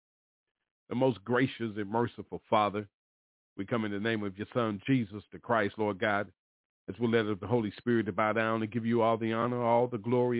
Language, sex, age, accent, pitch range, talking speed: English, male, 40-59, American, 105-125 Hz, 210 wpm